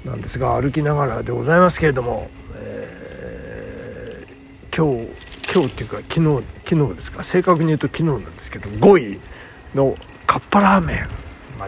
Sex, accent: male, native